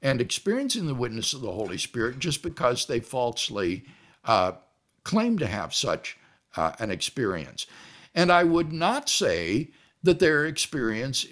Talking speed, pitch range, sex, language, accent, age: 150 wpm, 125-185 Hz, male, English, American, 60-79